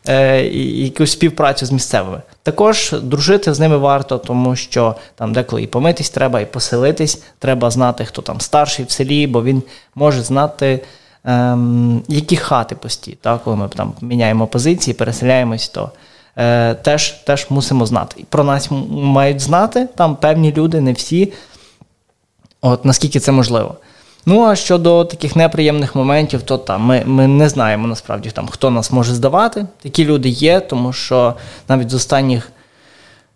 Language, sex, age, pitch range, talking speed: Ukrainian, male, 20-39, 125-150 Hz, 150 wpm